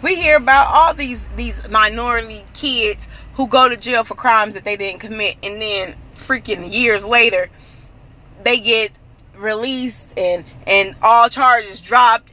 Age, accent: 20-39, American